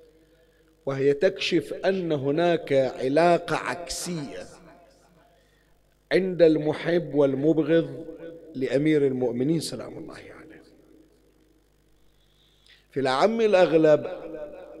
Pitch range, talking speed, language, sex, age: 140-175 Hz, 75 wpm, Arabic, male, 50-69